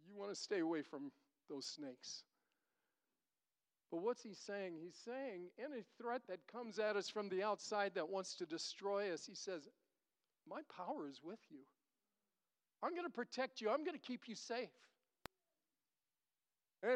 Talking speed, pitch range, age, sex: 165 wpm, 210-290 Hz, 50-69, male